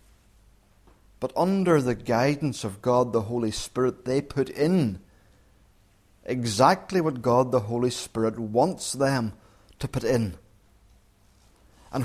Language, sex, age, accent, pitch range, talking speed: English, male, 30-49, British, 110-155 Hz, 120 wpm